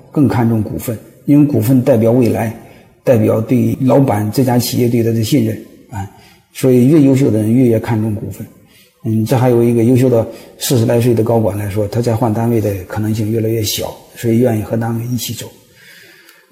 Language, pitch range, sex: Chinese, 110-135 Hz, male